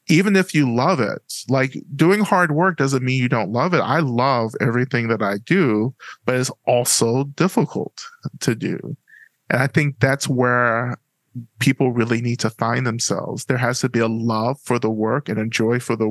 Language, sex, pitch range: English, male, 115-145 Hz